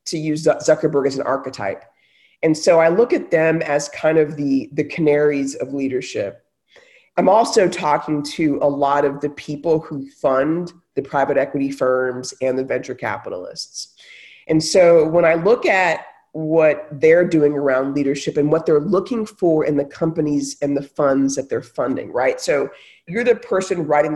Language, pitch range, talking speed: English, 140-175 Hz, 175 wpm